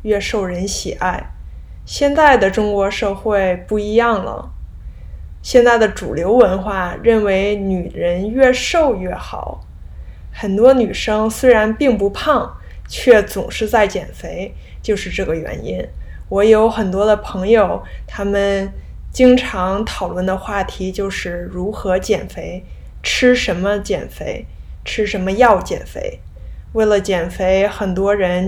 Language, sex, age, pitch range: Chinese, female, 20-39, 180-220 Hz